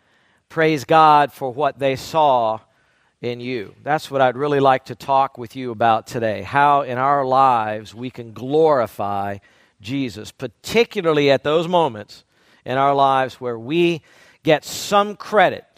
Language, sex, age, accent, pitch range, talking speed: English, male, 50-69, American, 120-155 Hz, 150 wpm